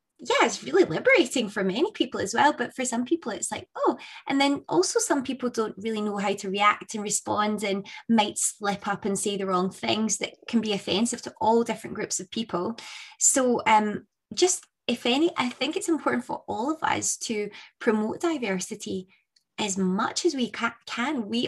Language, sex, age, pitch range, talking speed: English, female, 20-39, 195-240 Hz, 200 wpm